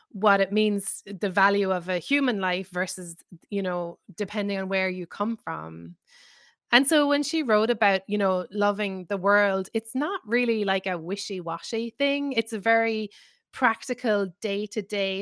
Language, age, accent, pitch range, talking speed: English, 20-39, Irish, 185-225 Hz, 160 wpm